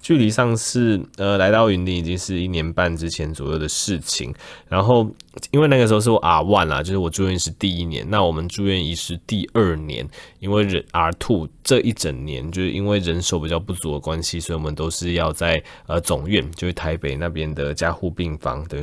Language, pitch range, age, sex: Chinese, 80-100 Hz, 20-39, male